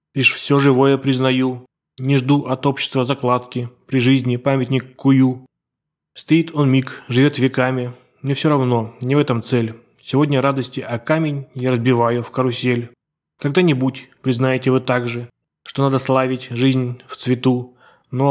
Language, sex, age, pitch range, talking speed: Russian, male, 20-39, 125-140 Hz, 150 wpm